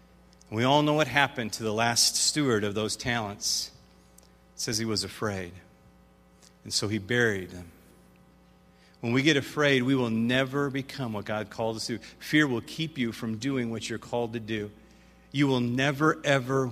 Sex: male